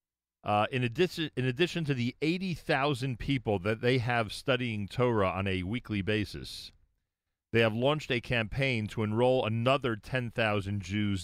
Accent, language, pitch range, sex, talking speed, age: American, English, 90-125 Hz, male, 160 wpm, 40-59